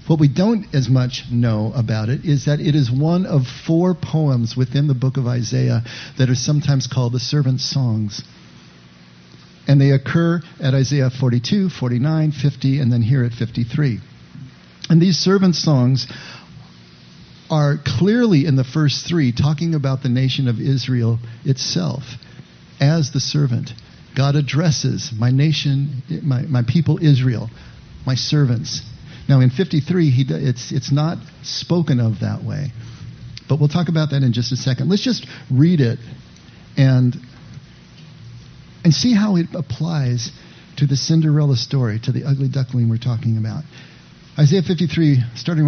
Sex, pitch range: male, 125-150 Hz